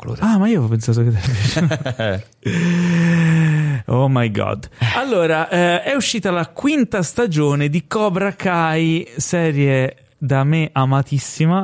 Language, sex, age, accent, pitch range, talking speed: Italian, male, 30-49, native, 115-155 Hz, 120 wpm